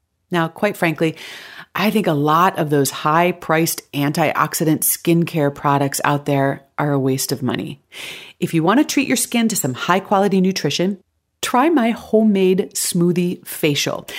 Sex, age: female, 40-59